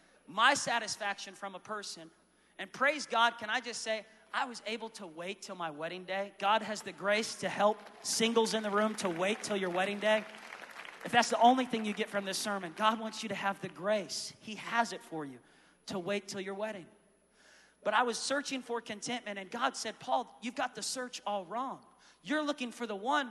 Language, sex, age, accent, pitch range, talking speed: English, male, 30-49, American, 200-250 Hz, 220 wpm